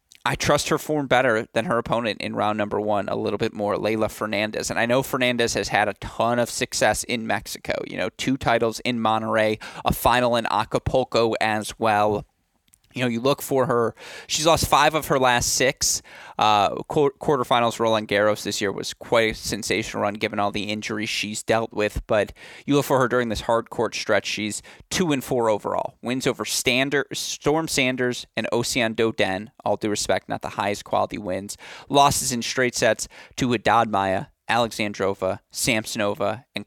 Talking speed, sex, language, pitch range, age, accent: 185 wpm, male, English, 105-140 Hz, 20-39, American